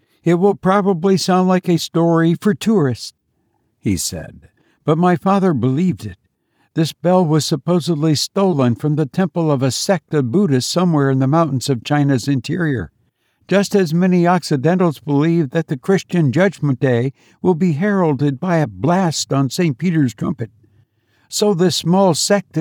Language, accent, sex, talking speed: English, American, male, 160 wpm